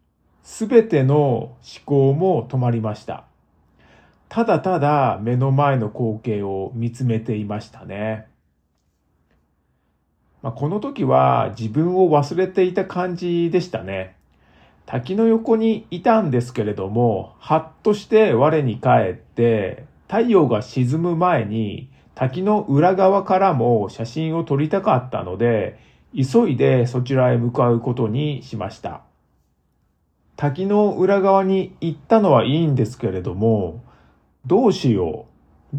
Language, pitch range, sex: Japanese, 110-170 Hz, male